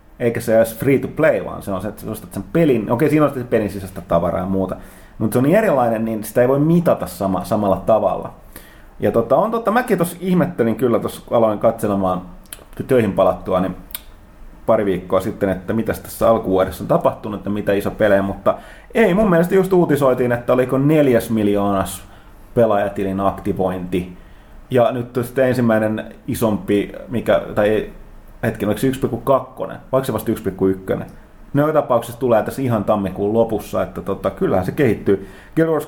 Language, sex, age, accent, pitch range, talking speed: Finnish, male, 30-49, native, 100-130 Hz, 180 wpm